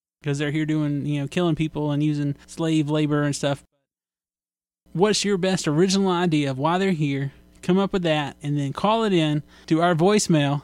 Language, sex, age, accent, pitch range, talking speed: English, male, 20-39, American, 140-170 Hz, 195 wpm